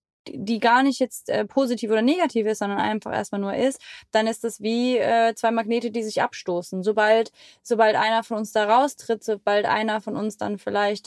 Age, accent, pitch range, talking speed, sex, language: 20-39, German, 200-230 Hz, 200 wpm, female, German